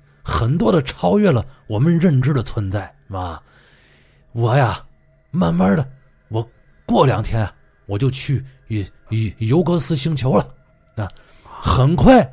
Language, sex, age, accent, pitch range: Chinese, male, 30-49, native, 110-160 Hz